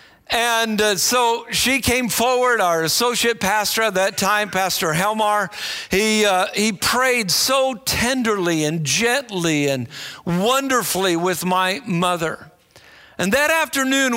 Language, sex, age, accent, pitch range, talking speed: English, male, 50-69, American, 170-225 Hz, 125 wpm